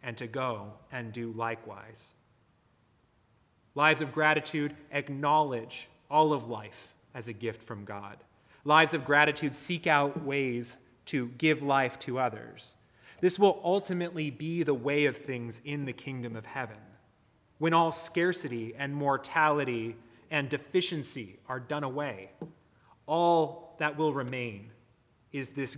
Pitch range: 120-150 Hz